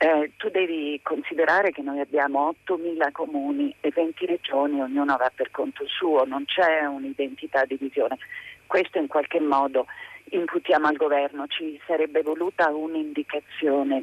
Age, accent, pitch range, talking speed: 40-59, native, 140-235 Hz, 140 wpm